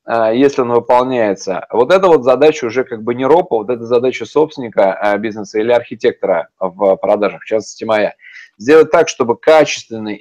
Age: 20-39